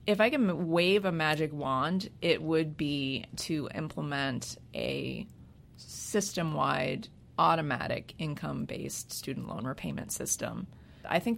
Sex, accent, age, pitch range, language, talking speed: female, American, 30-49, 155-200 Hz, English, 115 wpm